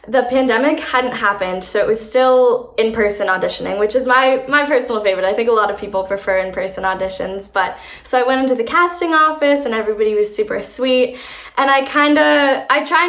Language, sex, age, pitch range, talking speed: English, female, 10-29, 200-265 Hz, 195 wpm